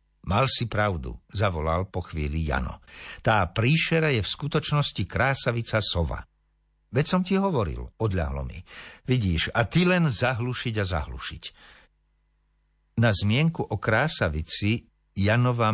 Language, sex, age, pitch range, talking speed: Slovak, male, 60-79, 90-130 Hz, 120 wpm